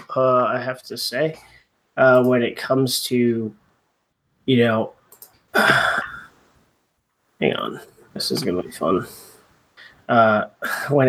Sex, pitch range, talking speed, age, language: male, 115-155 Hz, 115 wpm, 20-39, English